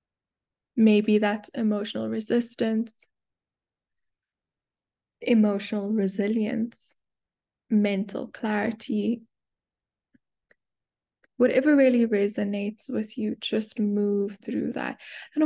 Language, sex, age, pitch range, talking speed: English, female, 10-29, 200-225 Hz, 70 wpm